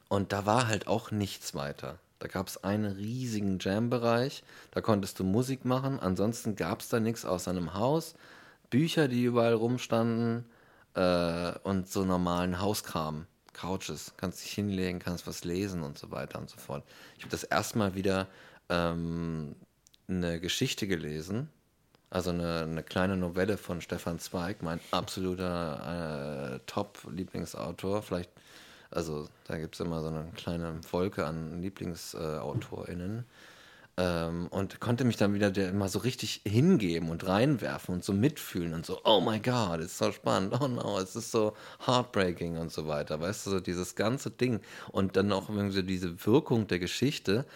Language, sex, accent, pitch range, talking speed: German, male, German, 85-115 Hz, 165 wpm